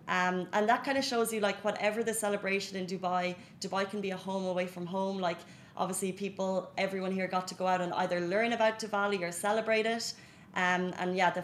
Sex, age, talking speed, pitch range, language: female, 30-49, 220 wpm, 185-225 Hz, Arabic